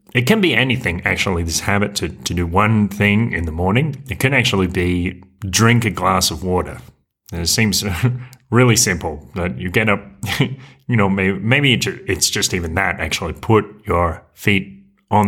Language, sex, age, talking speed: English, male, 30-49, 175 wpm